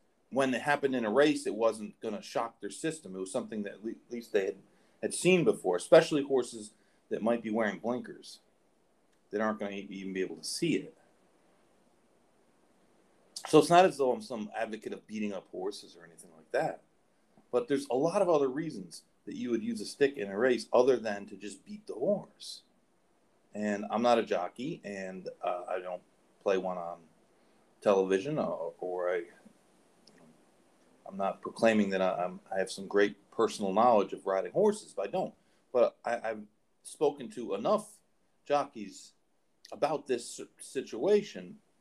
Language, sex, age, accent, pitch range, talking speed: English, male, 40-59, American, 105-170 Hz, 175 wpm